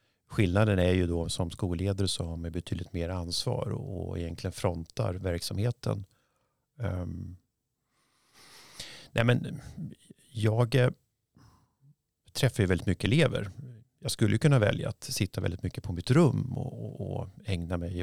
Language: Swedish